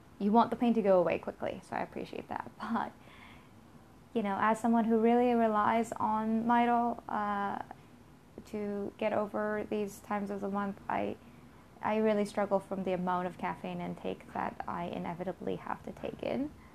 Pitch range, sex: 185-220 Hz, female